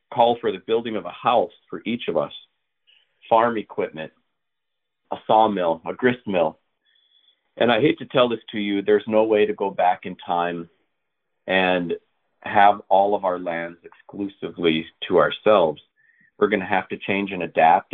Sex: male